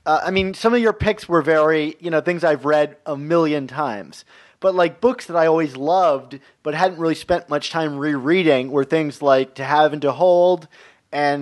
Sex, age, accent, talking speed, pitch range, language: male, 30-49, American, 210 wpm, 140-170 Hz, English